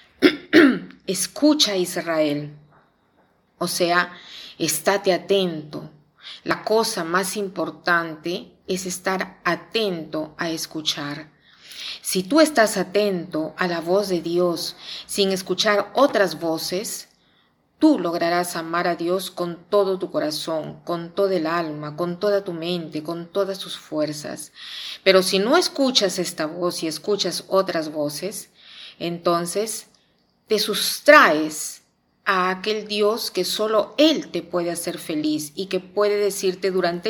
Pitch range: 160-205 Hz